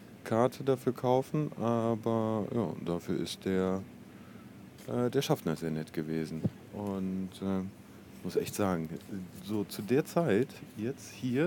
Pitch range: 100-125 Hz